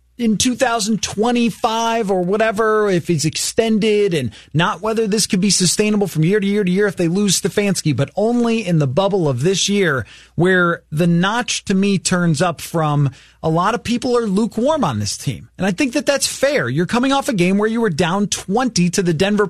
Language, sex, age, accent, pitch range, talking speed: English, male, 30-49, American, 155-210 Hz, 210 wpm